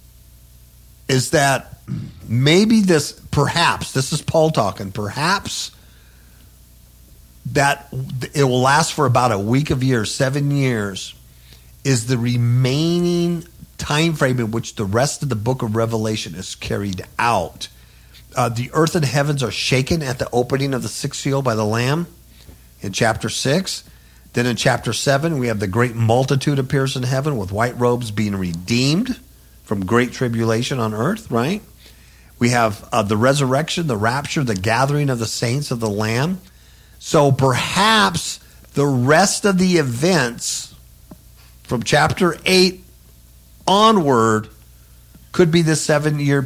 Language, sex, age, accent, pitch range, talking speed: English, male, 50-69, American, 105-145 Hz, 145 wpm